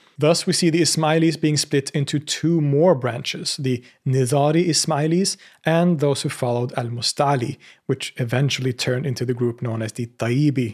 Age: 30-49